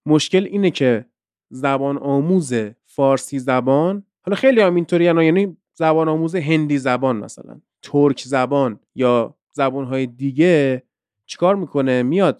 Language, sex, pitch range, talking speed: Persian, male, 130-185 Hz, 120 wpm